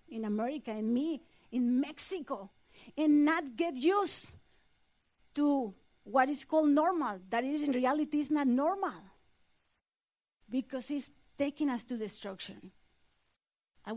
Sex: female